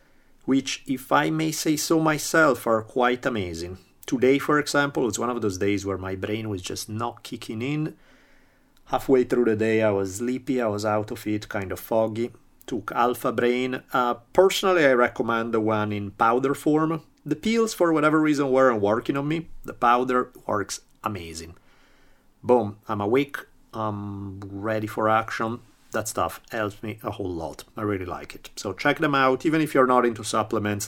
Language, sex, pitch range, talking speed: English, male, 100-125 Hz, 185 wpm